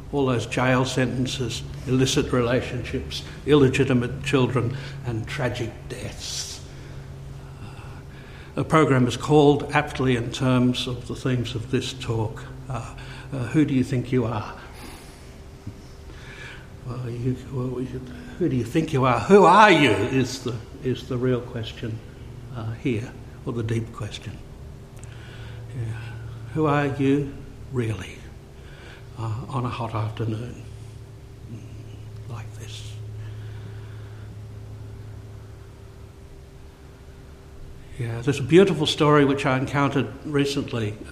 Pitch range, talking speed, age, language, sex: 115-135 Hz, 110 wpm, 60-79, English, male